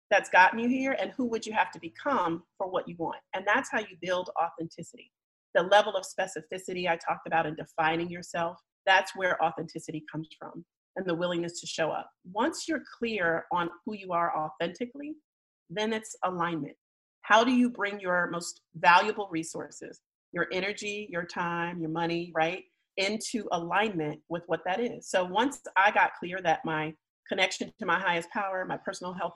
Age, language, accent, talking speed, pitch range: 40-59, English, American, 180 wpm, 165-205 Hz